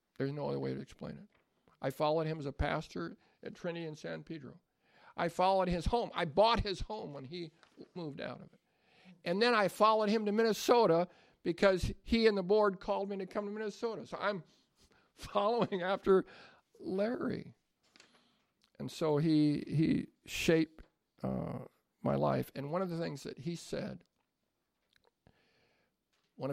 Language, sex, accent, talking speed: English, male, American, 165 wpm